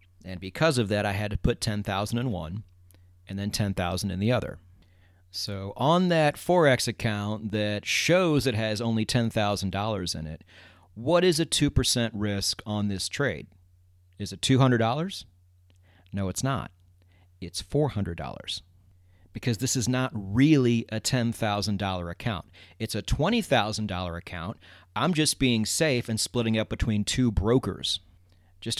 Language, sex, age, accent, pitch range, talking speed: English, male, 40-59, American, 90-120 Hz, 145 wpm